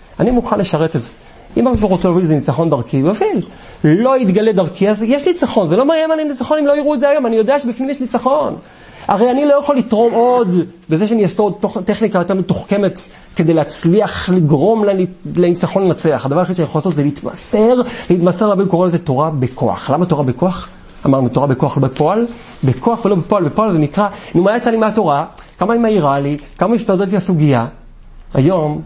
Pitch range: 140-205 Hz